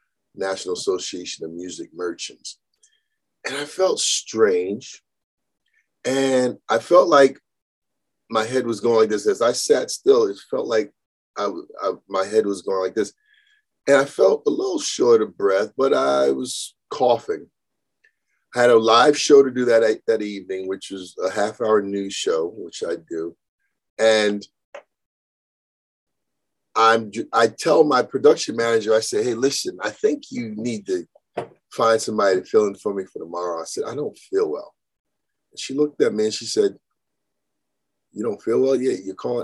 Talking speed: 165 wpm